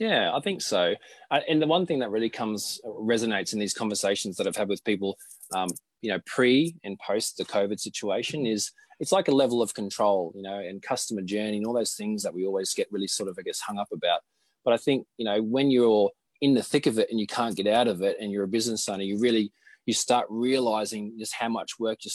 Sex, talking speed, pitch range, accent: male, 245 wpm, 110-140 Hz, Australian